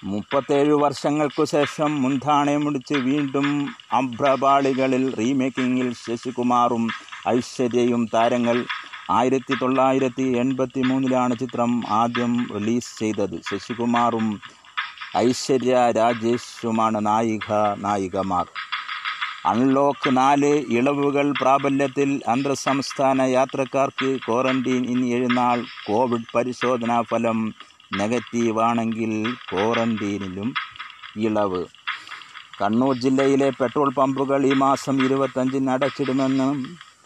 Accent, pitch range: native, 115-135 Hz